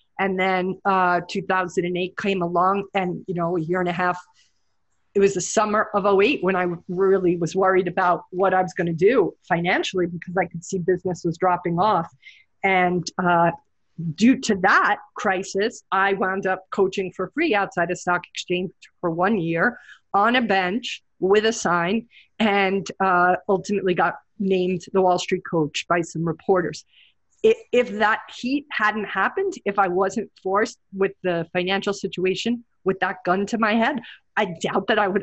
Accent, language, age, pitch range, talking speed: American, English, 40-59, 175-205 Hz, 170 wpm